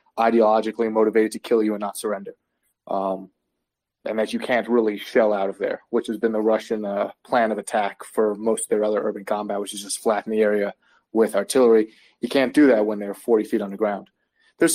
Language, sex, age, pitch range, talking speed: English, male, 30-49, 110-130 Hz, 210 wpm